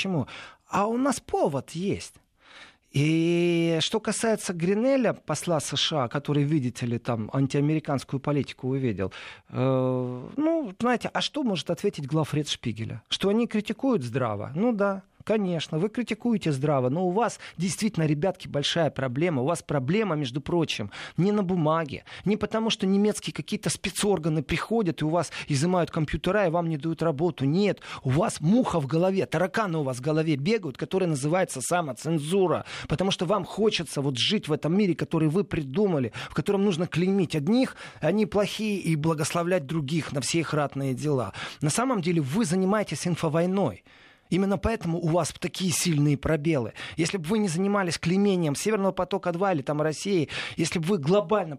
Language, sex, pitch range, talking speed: Russian, male, 145-195 Hz, 165 wpm